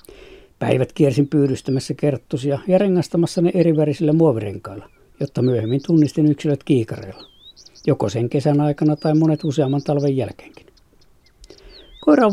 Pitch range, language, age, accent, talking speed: 125-165 Hz, Finnish, 60-79, native, 125 wpm